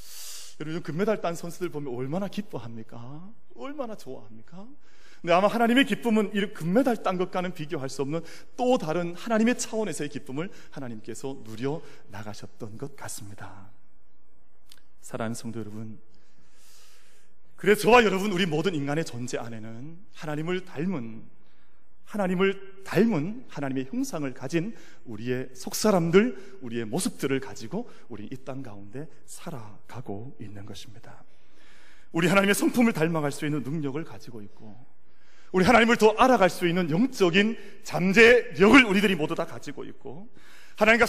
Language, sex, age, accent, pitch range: Korean, male, 30-49, native, 130-210 Hz